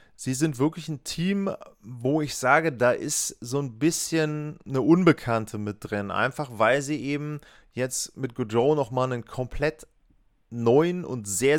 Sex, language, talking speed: male, German, 160 wpm